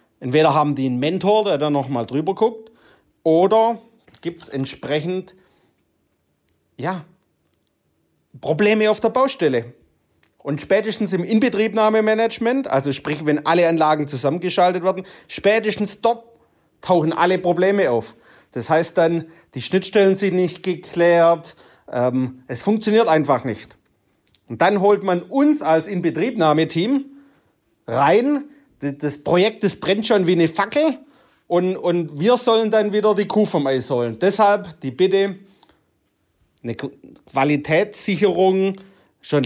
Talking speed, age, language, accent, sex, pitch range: 125 wpm, 40-59, German, German, male, 140-195 Hz